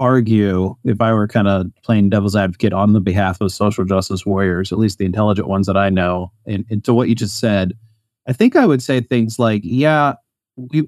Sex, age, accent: male, 30-49, American